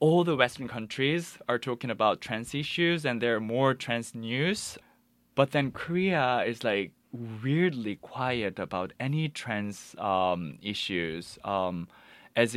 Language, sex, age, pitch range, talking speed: English, male, 20-39, 105-145 Hz, 140 wpm